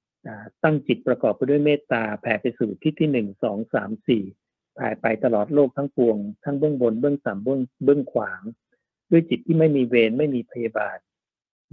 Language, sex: Thai, male